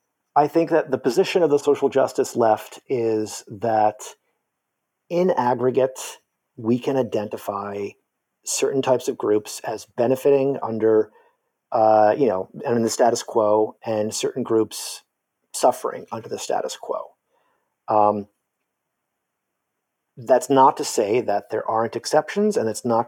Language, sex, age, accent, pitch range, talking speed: English, male, 40-59, American, 110-145 Hz, 135 wpm